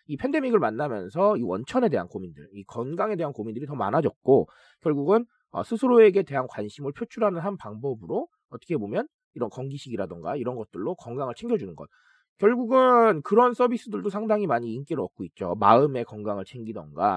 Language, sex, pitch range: Korean, male, 140-225 Hz